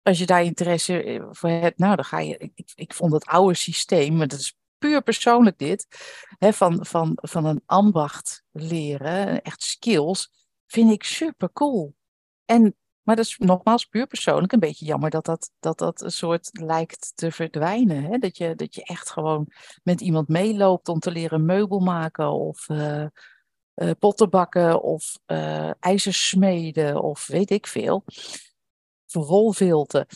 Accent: Dutch